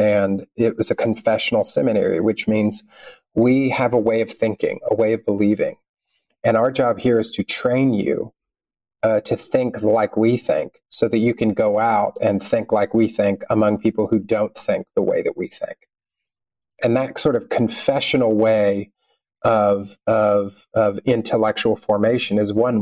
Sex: male